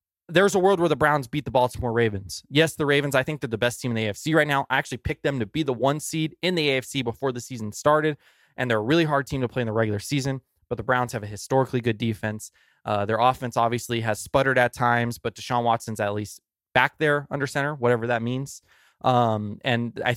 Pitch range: 115-140 Hz